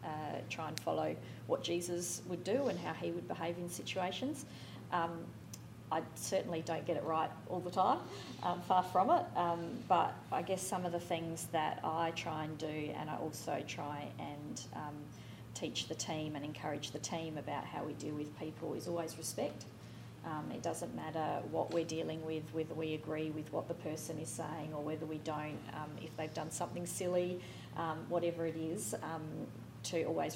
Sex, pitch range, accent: female, 155-175 Hz, Australian